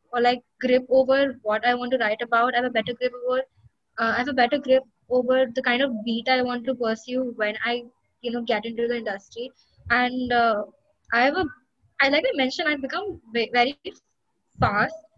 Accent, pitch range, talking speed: Indian, 235-275 Hz, 205 wpm